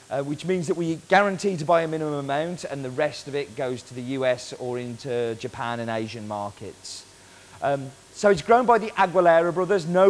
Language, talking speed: English, 210 wpm